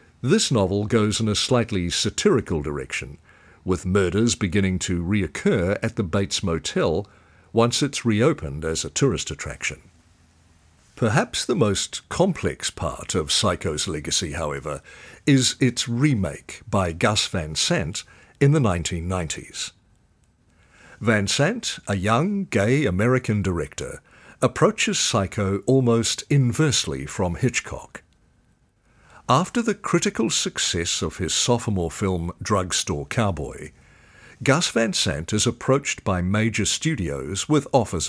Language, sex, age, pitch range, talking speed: English, male, 50-69, 90-125 Hz, 120 wpm